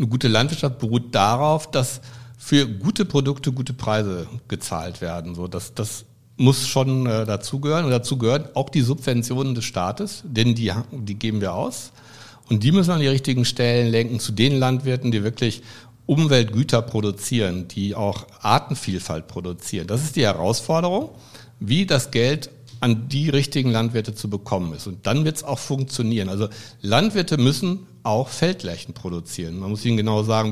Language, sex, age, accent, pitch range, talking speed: German, male, 60-79, German, 110-135 Hz, 165 wpm